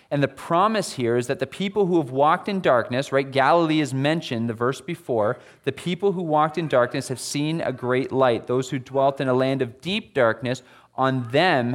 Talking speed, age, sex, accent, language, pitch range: 215 wpm, 30-49, male, American, English, 120-155 Hz